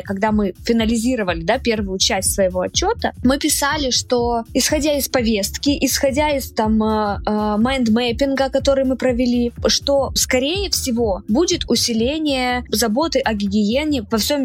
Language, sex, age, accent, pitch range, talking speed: Russian, female, 20-39, native, 205-275 Hz, 120 wpm